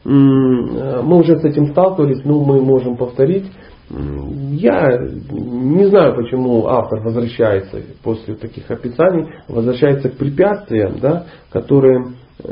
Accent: native